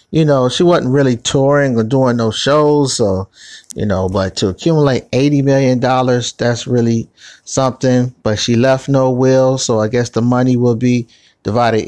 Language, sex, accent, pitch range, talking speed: English, male, American, 110-130 Hz, 175 wpm